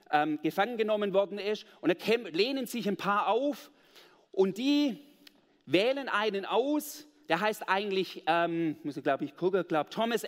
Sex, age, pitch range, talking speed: male, 40-59, 190-270 Hz, 165 wpm